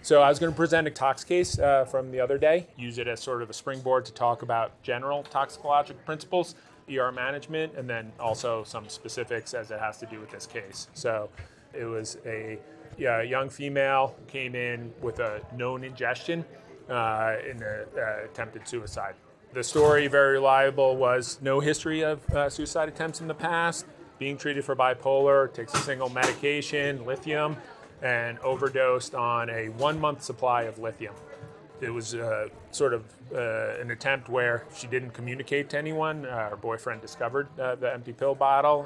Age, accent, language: 30-49, American, English